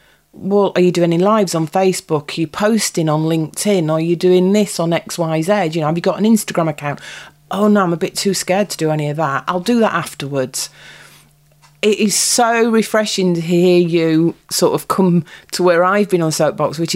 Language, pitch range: English, 155-195 Hz